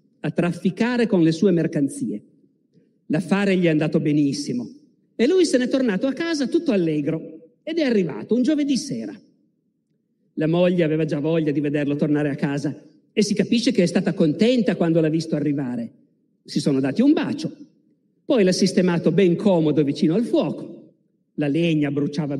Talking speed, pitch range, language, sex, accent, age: 170 wpm, 160-235 Hz, Italian, male, native, 50-69